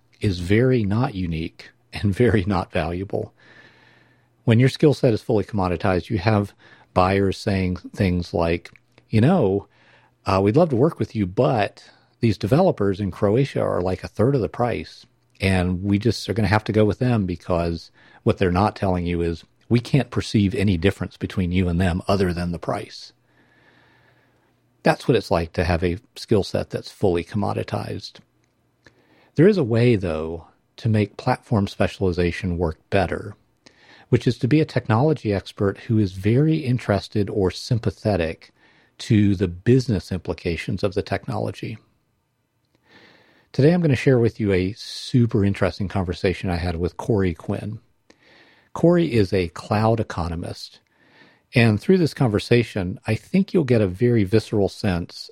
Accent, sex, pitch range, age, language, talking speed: American, male, 95-120 Hz, 50-69, English, 160 wpm